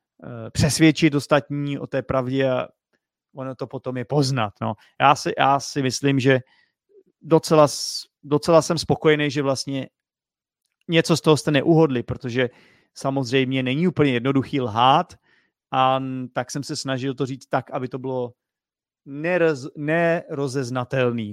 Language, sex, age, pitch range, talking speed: Czech, male, 30-49, 130-155 Hz, 125 wpm